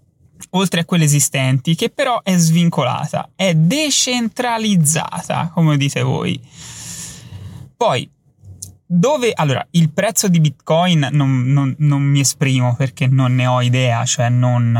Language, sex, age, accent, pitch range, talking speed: Italian, male, 20-39, native, 130-150 Hz, 125 wpm